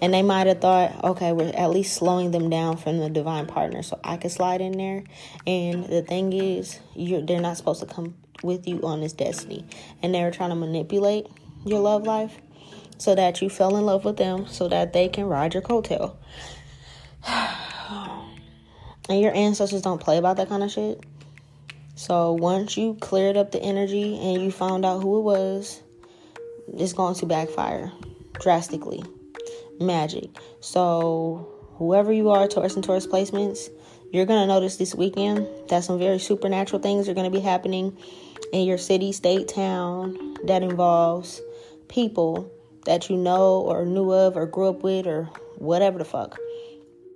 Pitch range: 170-195 Hz